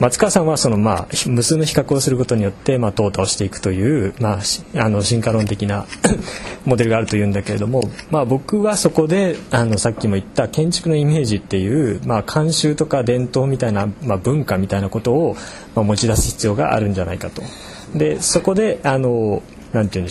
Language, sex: Japanese, male